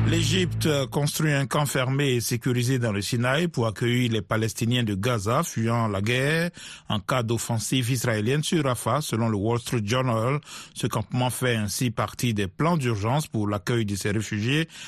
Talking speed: 175 wpm